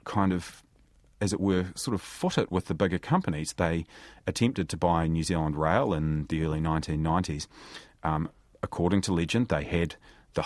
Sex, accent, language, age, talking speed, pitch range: male, Australian, English, 30-49, 180 wpm, 80-95 Hz